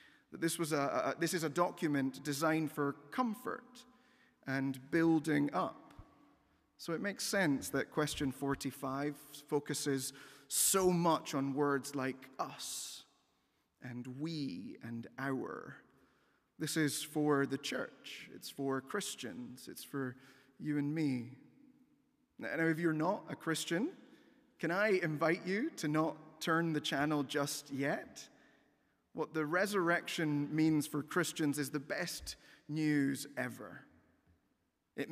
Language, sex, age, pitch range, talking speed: English, male, 30-49, 140-170 Hz, 130 wpm